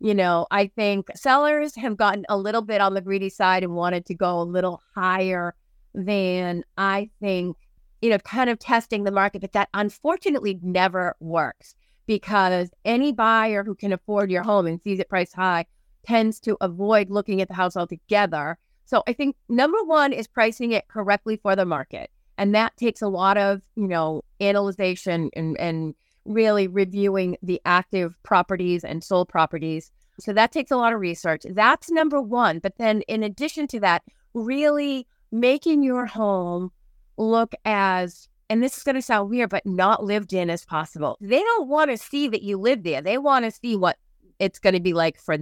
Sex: female